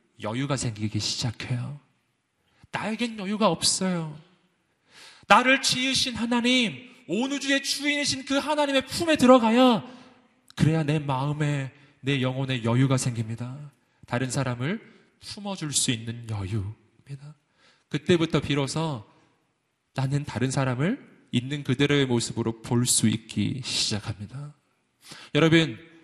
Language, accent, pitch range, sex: Korean, native, 120-160 Hz, male